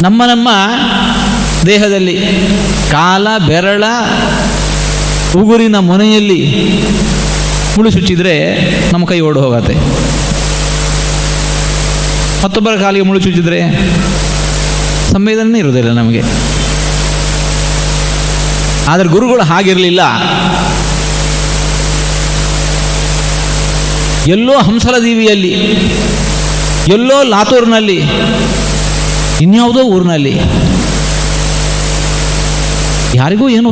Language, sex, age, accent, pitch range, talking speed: Kannada, male, 50-69, native, 155-210 Hz, 50 wpm